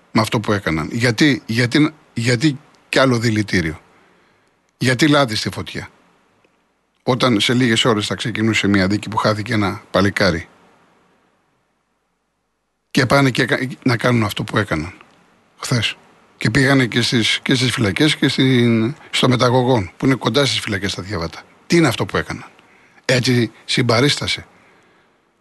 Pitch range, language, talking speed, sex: 105-130 Hz, Greek, 140 wpm, male